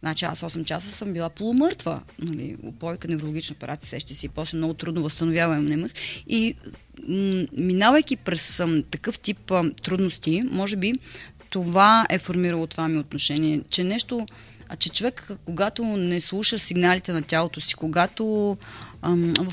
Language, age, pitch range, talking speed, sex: Bulgarian, 30-49, 160-210 Hz, 140 wpm, female